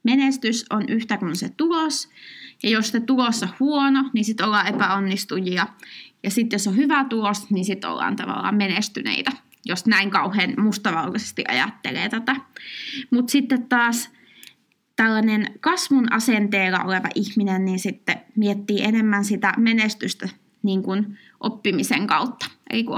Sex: female